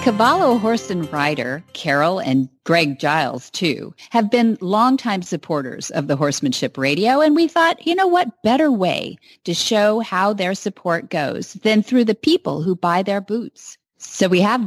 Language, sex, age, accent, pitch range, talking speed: English, female, 40-59, American, 160-225 Hz, 170 wpm